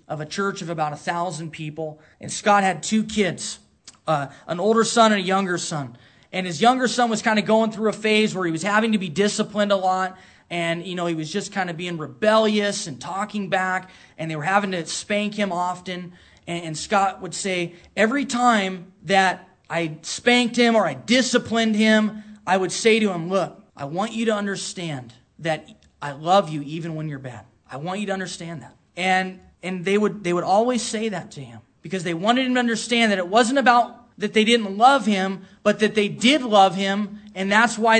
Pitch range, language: 170-215 Hz, English